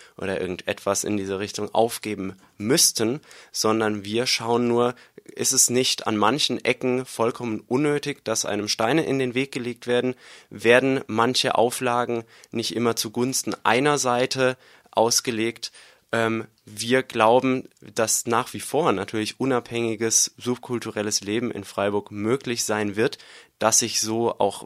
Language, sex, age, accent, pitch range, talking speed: German, male, 20-39, German, 105-120 Hz, 135 wpm